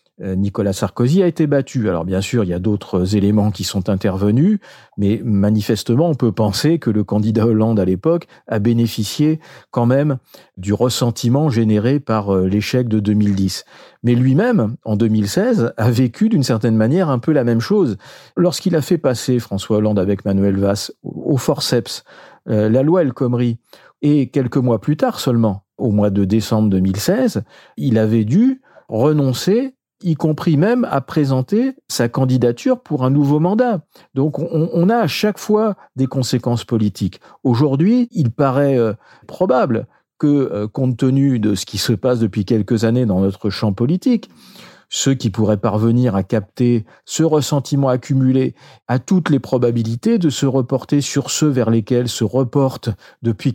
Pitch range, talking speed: 110-145 Hz, 165 wpm